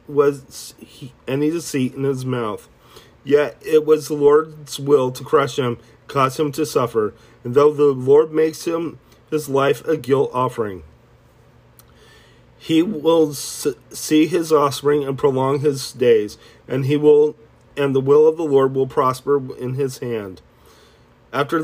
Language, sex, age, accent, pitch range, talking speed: English, male, 40-59, American, 120-150 Hz, 155 wpm